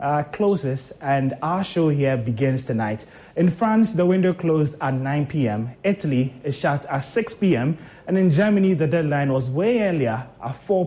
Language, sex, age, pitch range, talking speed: English, male, 20-39, 140-180 Hz, 175 wpm